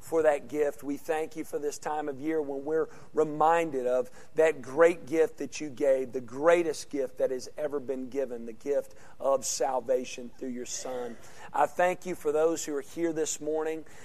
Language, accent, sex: English, American, male